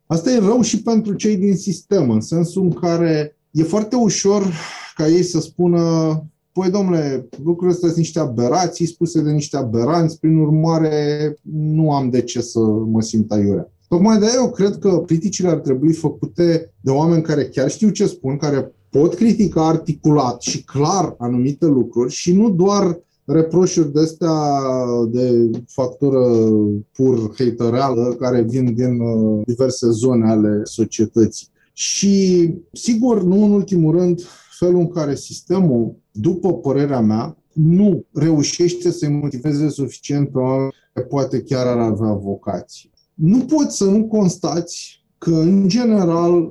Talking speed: 145 wpm